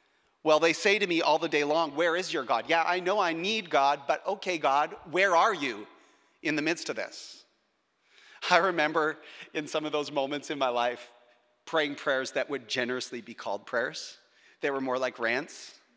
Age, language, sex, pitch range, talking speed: 40-59, English, male, 135-190 Hz, 200 wpm